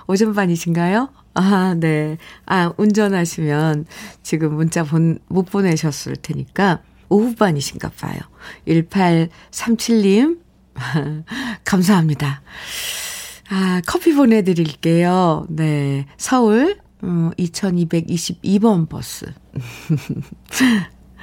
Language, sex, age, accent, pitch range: Korean, female, 50-69, native, 165-235 Hz